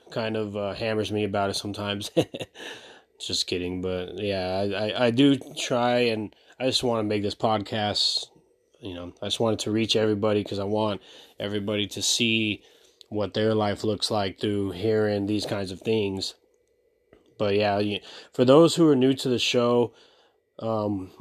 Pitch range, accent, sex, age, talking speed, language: 105-125 Hz, American, male, 30-49, 175 wpm, English